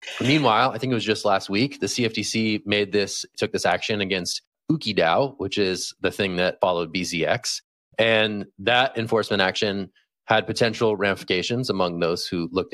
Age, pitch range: 30-49, 95-120 Hz